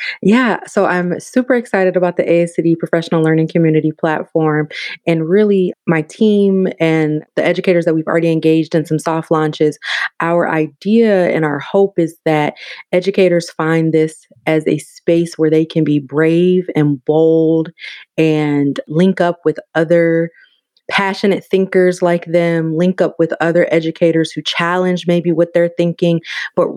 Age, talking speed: 30-49, 150 wpm